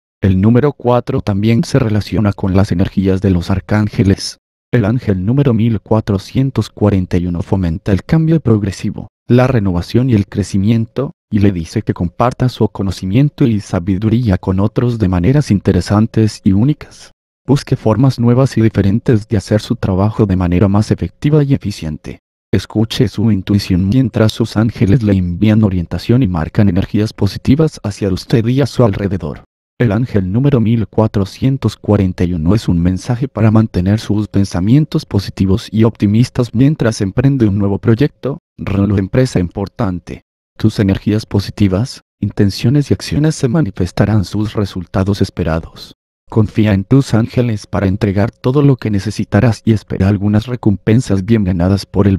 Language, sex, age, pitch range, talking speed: Spanish, male, 30-49, 95-120 Hz, 145 wpm